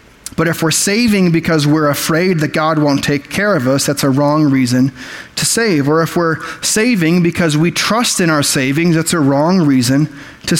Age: 30-49